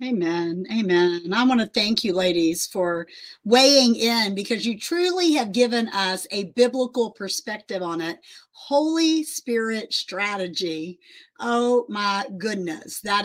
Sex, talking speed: female, 130 wpm